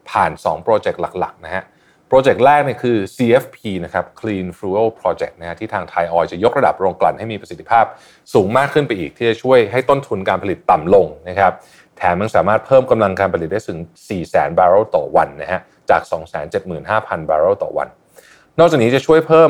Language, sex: Thai, male